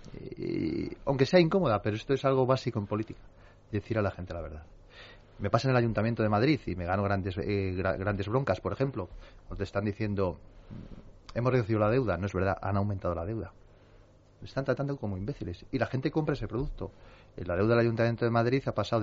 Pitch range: 100-135 Hz